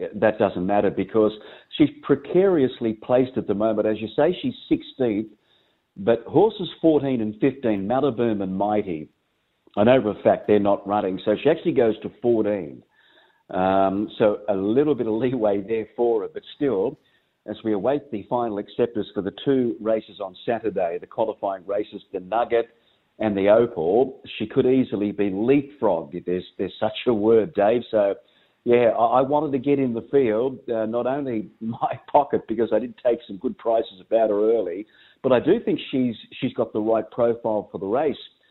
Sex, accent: male, Australian